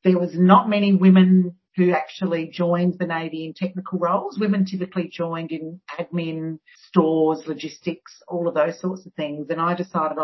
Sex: female